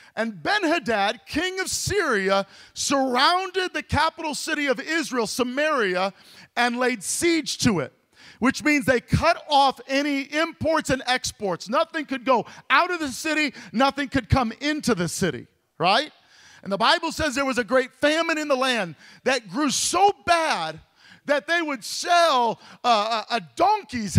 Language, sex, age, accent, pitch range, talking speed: English, male, 40-59, American, 230-315 Hz, 155 wpm